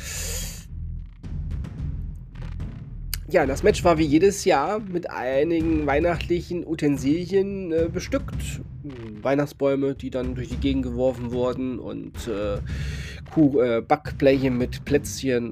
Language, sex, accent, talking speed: German, male, German, 110 wpm